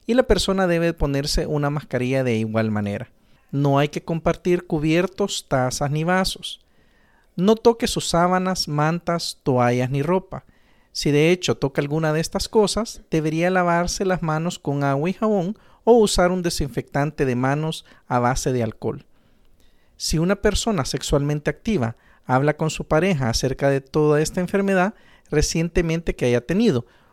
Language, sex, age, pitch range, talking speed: Spanish, male, 50-69, 140-185 Hz, 155 wpm